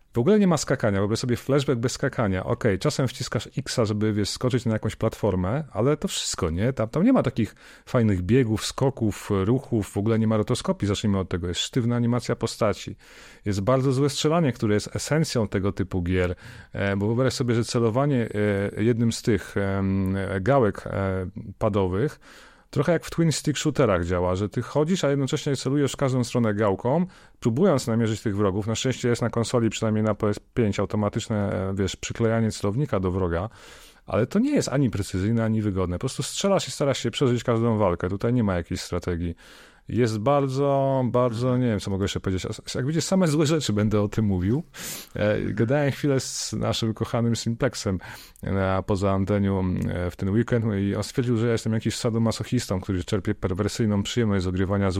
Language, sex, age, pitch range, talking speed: Polish, male, 30-49, 100-130 Hz, 180 wpm